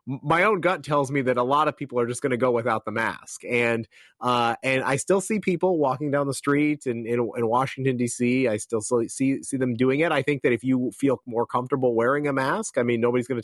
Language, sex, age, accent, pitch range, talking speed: English, male, 30-49, American, 115-160 Hz, 255 wpm